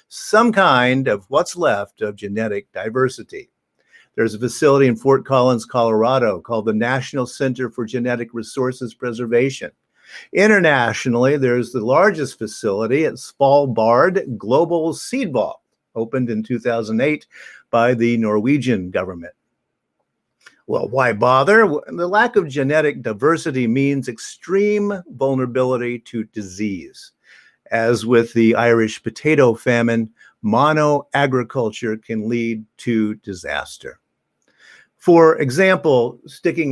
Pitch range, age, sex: 115-145 Hz, 50-69, male